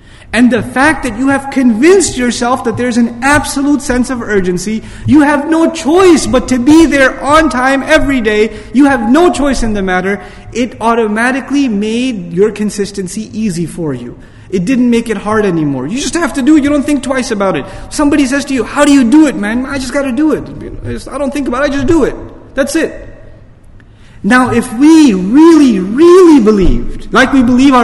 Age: 30-49